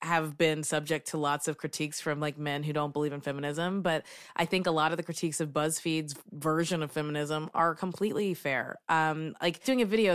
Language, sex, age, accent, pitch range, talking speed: English, female, 20-39, American, 160-230 Hz, 215 wpm